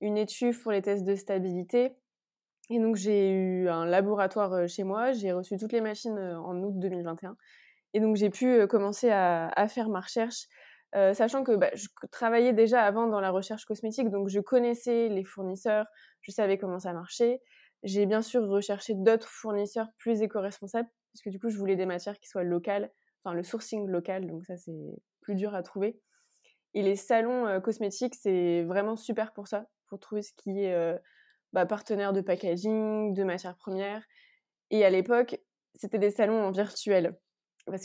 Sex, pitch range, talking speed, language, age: female, 185-225 Hz, 180 wpm, French, 20-39